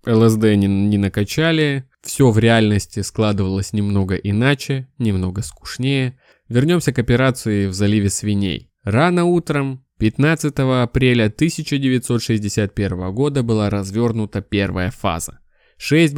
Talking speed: 110 wpm